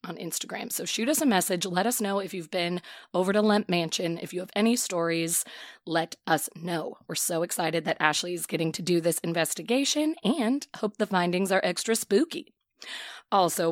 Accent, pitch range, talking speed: American, 170-215 Hz, 195 wpm